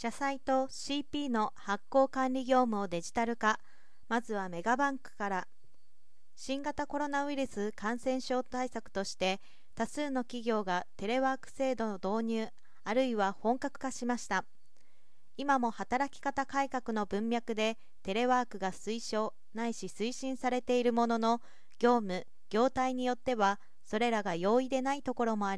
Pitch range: 205-255 Hz